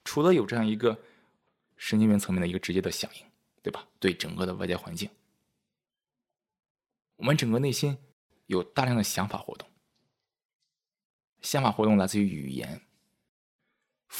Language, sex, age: Chinese, male, 20-39